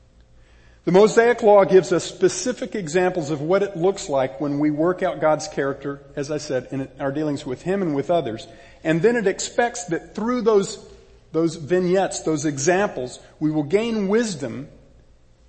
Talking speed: 170 wpm